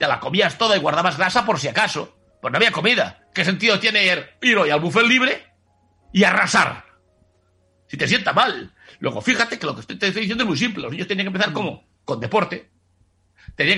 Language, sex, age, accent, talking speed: Spanish, male, 60-79, Spanish, 215 wpm